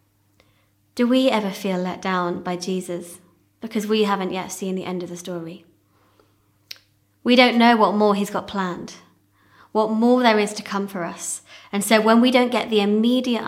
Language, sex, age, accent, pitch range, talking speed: English, female, 20-39, British, 170-215 Hz, 185 wpm